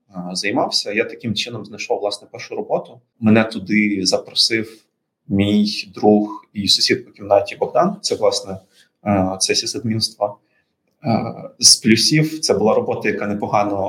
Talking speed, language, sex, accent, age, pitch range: 125 wpm, Ukrainian, male, native, 20-39, 100-125 Hz